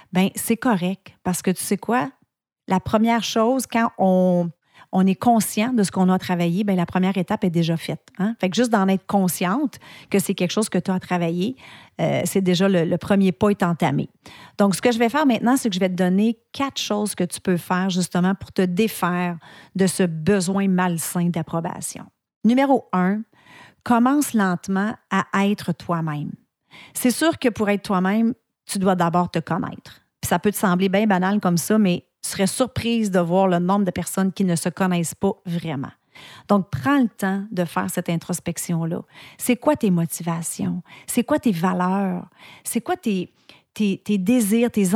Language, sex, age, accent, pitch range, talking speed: French, female, 40-59, Canadian, 180-220 Hz, 195 wpm